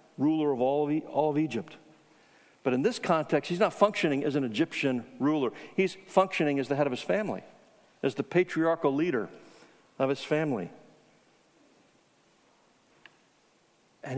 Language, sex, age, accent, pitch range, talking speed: English, male, 60-79, American, 140-180 Hz, 135 wpm